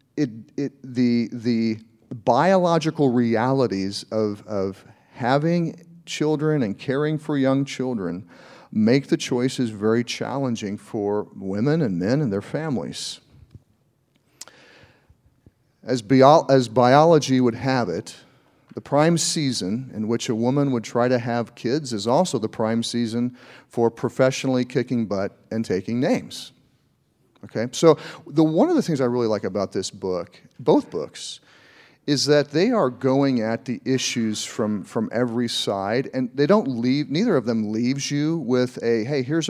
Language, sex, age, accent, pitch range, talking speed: English, male, 40-59, American, 115-140 Hz, 150 wpm